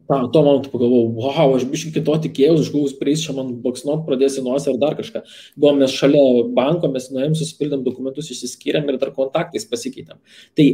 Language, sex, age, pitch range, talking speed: English, male, 20-39, 125-145 Hz, 175 wpm